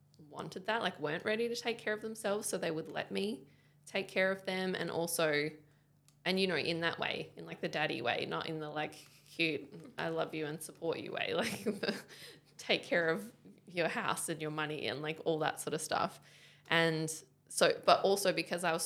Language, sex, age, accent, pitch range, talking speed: English, female, 20-39, Australian, 150-185 Hz, 215 wpm